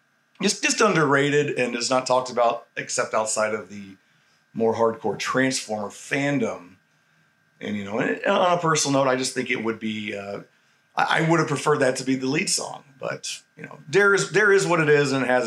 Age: 40-59